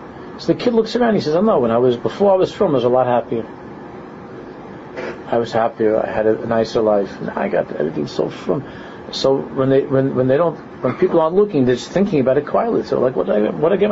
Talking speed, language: 265 wpm, English